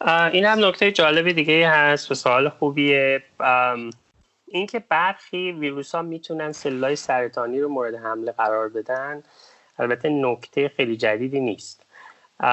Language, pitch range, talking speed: Persian, 125-160 Hz, 125 wpm